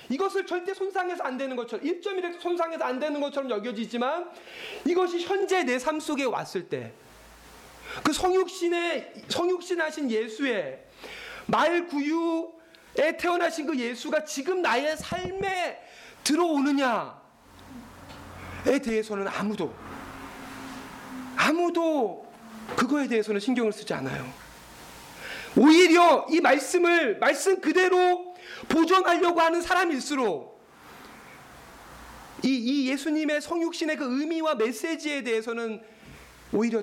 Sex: male